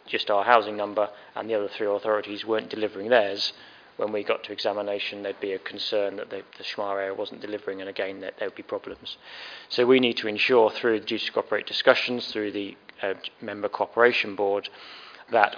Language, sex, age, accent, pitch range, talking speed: English, male, 20-39, British, 100-120 Hz, 205 wpm